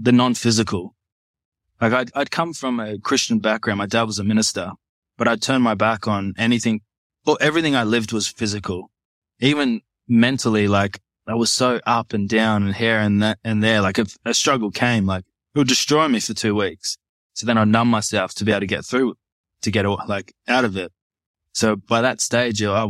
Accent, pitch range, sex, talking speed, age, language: Australian, 100-120 Hz, male, 210 wpm, 20-39, English